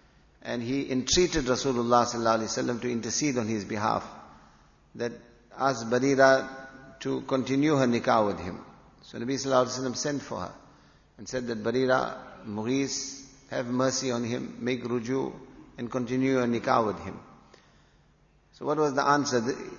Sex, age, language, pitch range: male, 50-69, English, 110-135 Hz